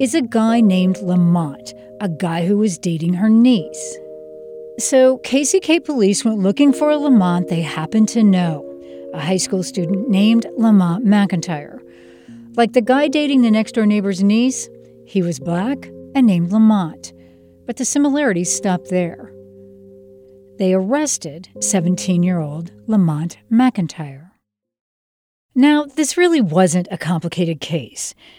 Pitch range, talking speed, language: 170-235 Hz, 130 wpm, English